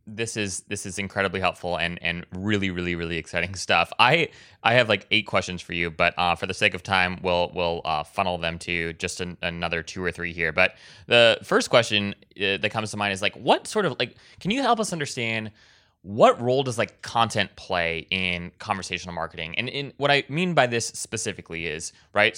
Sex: male